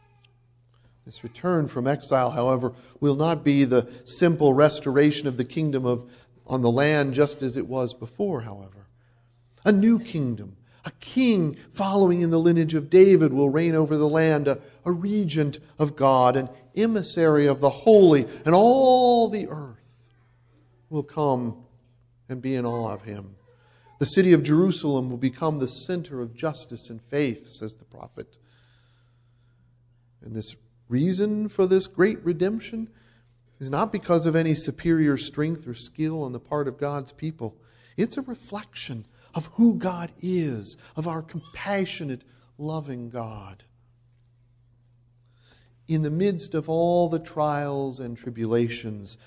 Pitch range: 120-165 Hz